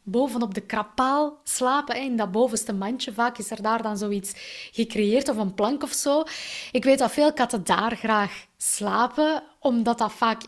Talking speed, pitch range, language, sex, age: 180 wpm, 215-260 Hz, Dutch, female, 20-39